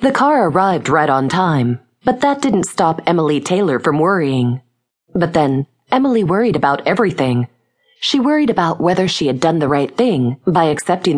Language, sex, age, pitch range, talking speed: English, female, 30-49, 135-195 Hz, 170 wpm